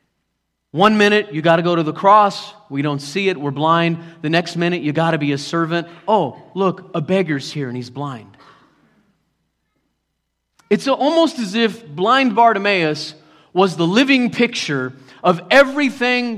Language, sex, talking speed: English, male, 160 wpm